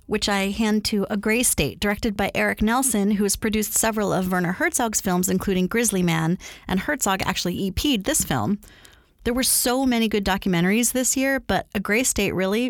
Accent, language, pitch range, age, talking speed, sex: American, English, 180-225 Hz, 30-49, 195 wpm, female